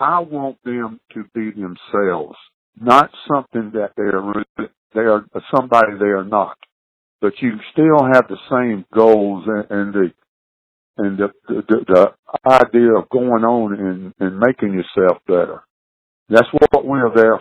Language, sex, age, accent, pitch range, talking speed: English, male, 60-79, American, 100-120 Hz, 150 wpm